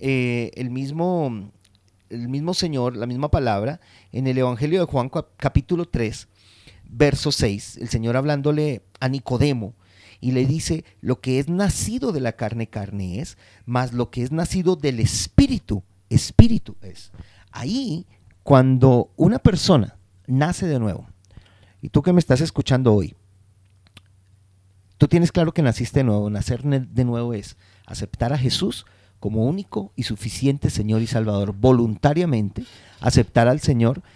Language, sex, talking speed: Spanish, male, 145 wpm